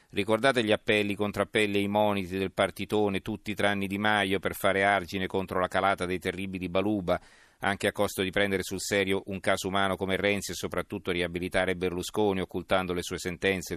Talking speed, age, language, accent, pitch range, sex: 185 wpm, 40-59, Italian, native, 90-105 Hz, male